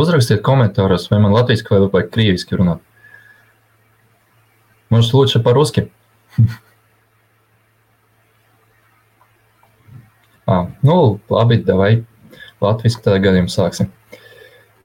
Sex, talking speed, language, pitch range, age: male, 55 wpm, English, 100-115 Hz, 20-39